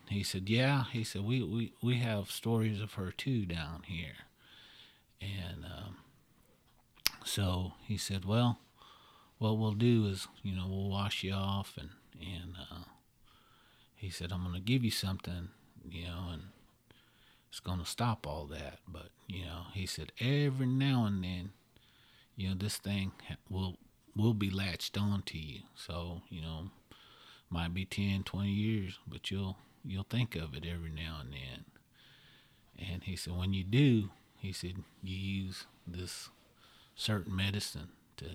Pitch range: 90-115 Hz